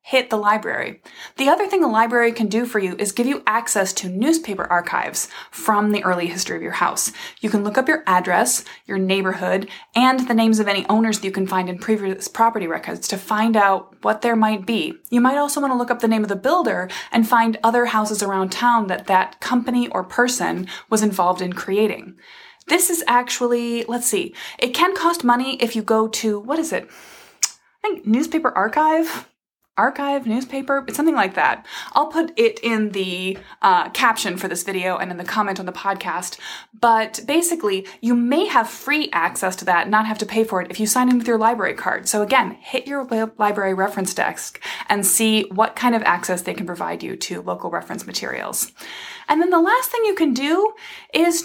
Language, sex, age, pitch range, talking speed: English, female, 20-39, 200-280 Hz, 205 wpm